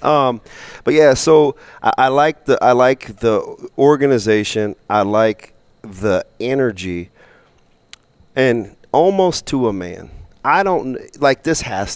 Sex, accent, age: male, American, 40-59